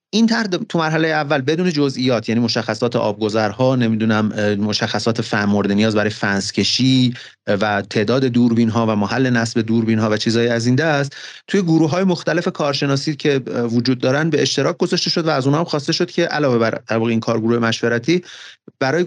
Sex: male